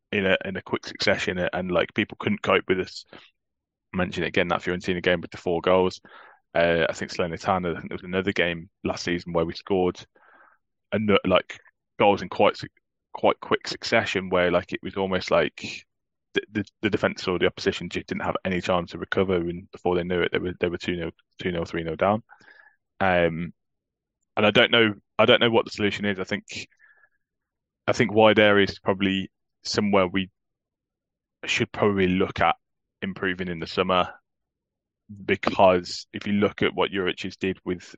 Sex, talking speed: male, 190 wpm